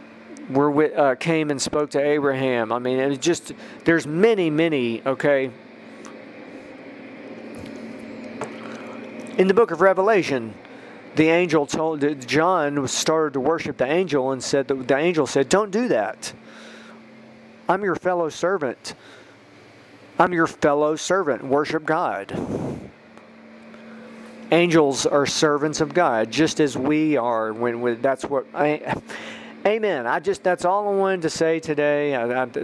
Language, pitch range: English, 125-160 Hz